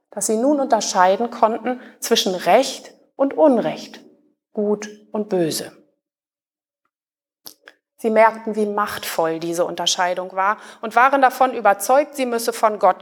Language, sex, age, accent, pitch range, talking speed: German, female, 30-49, German, 210-275 Hz, 125 wpm